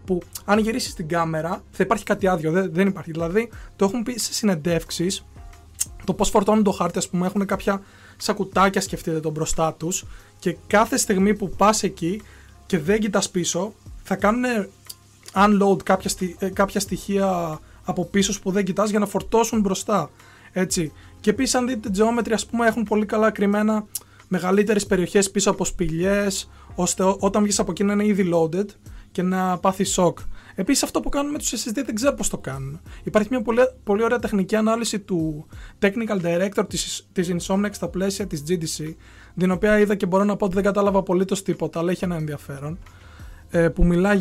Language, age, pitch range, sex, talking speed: Greek, 20-39, 170-205 Hz, male, 185 wpm